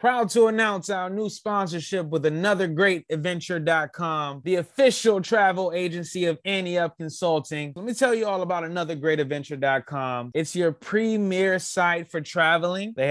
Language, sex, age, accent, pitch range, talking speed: English, male, 20-39, American, 155-195 Hz, 135 wpm